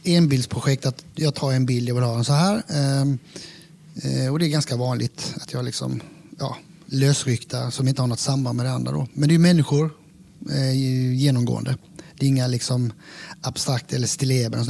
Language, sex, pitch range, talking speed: Swedish, male, 135-165 Hz, 180 wpm